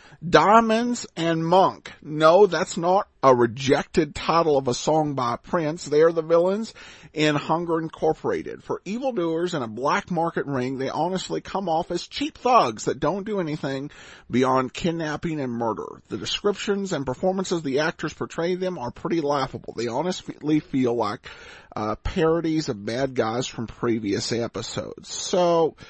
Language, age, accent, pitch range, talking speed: English, 40-59, American, 140-185 Hz, 160 wpm